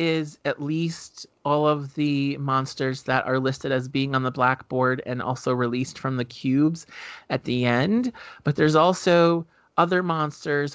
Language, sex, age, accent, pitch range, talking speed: English, male, 30-49, American, 125-145 Hz, 160 wpm